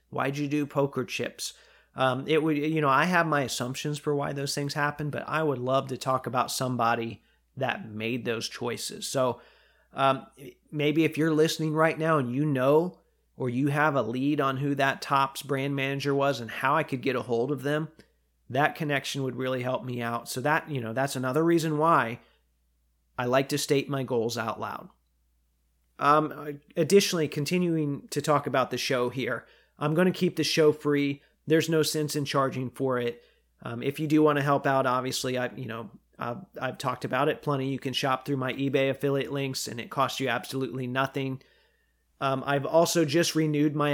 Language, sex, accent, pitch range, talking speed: English, male, American, 125-150 Hz, 200 wpm